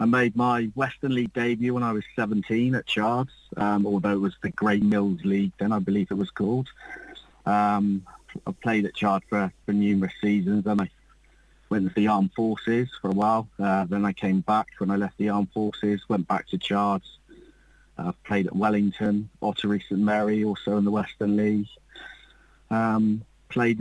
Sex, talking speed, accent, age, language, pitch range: male, 185 wpm, British, 40-59, English, 105-120 Hz